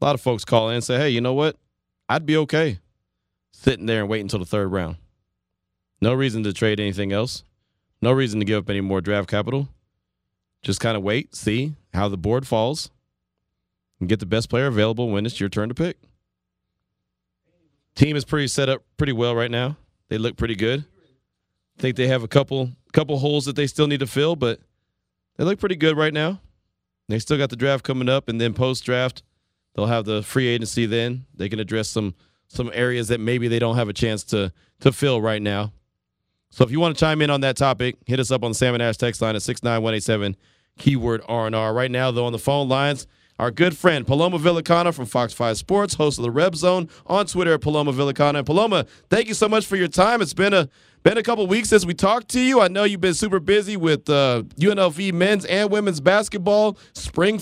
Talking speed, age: 230 wpm, 30-49